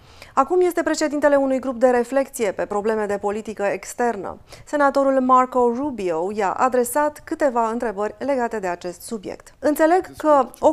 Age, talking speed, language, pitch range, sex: 30-49, 145 wpm, Romanian, 210-270 Hz, female